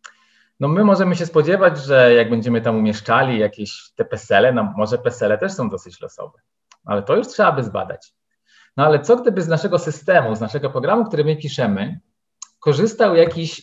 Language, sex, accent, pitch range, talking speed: Polish, male, native, 115-165 Hz, 180 wpm